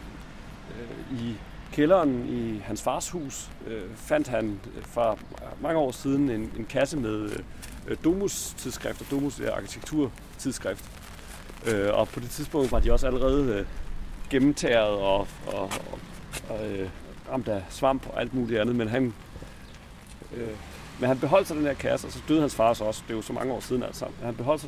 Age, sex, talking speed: 40-59, male, 170 wpm